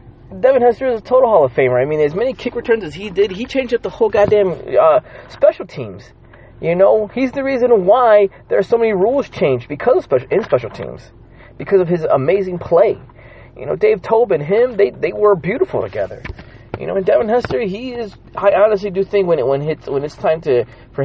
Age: 30-49